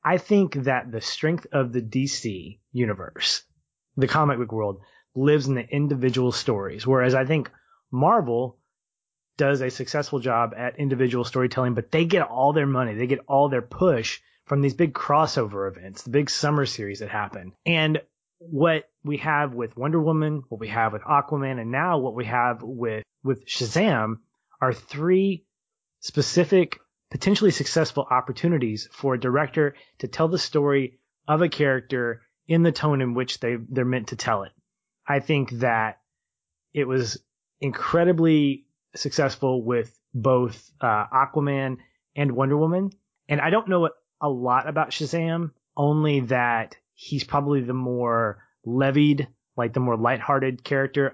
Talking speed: 155 wpm